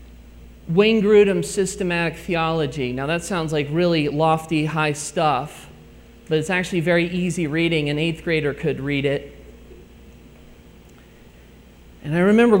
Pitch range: 145-195 Hz